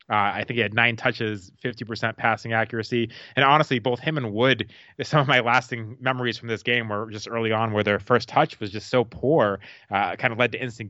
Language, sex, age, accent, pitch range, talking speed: English, male, 20-39, American, 105-125 Hz, 230 wpm